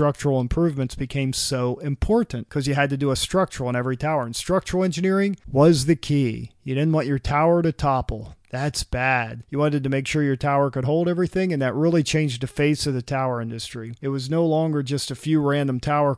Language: English